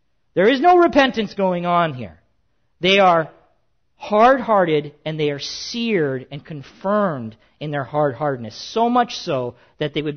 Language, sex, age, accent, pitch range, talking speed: English, male, 50-69, American, 125-180 Hz, 155 wpm